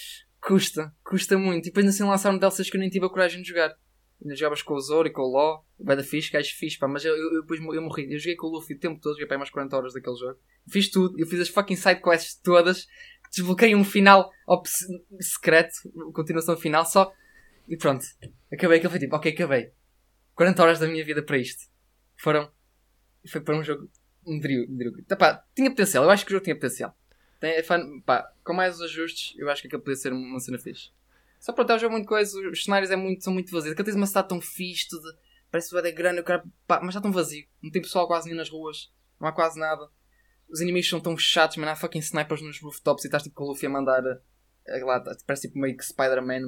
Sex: male